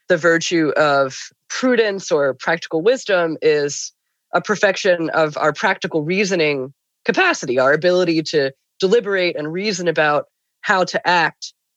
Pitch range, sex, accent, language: 155-195 Hz, female, American, English